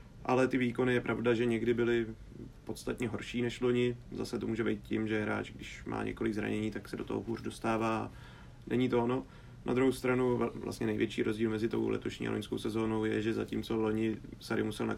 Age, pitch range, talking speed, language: 30-49, 110-120 Hz, 205 wpm, Czech